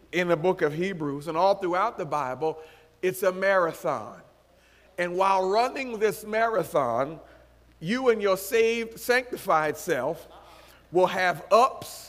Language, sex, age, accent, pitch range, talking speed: English, male, 40-59, American, 185-260 Hz, 135 wpm